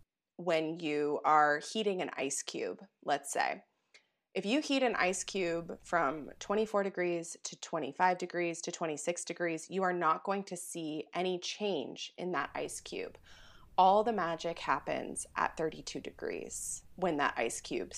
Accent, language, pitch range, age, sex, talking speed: American, English, 160-195 Hz, 20-39, female, 155 wpm